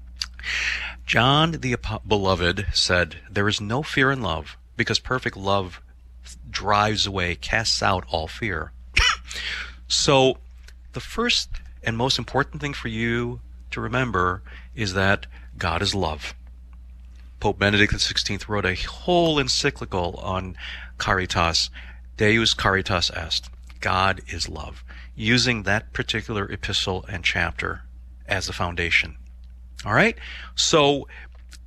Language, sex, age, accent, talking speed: English, male, 40-59, American, 115 wpm